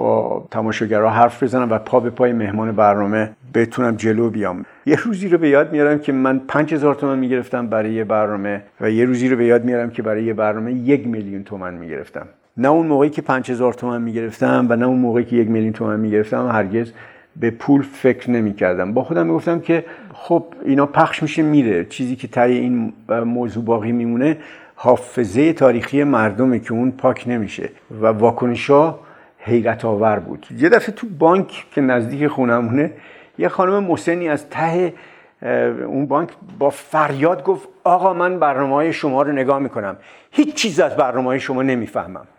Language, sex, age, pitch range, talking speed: Persian, male, 50-69, 110-140 Hz, 175 wpm